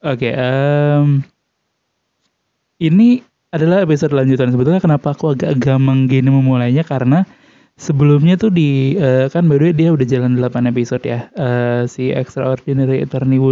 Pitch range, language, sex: 130-150 Hz, Indonesian, male